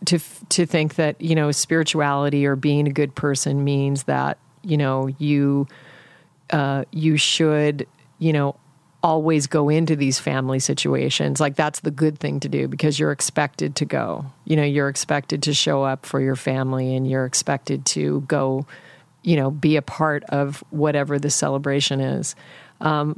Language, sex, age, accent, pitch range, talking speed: English, female, 40-59, American, 140-160 Hz, 170 wpm